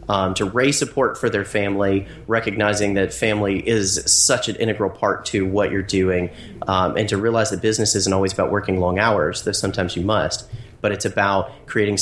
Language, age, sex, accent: English, 30-49, male, American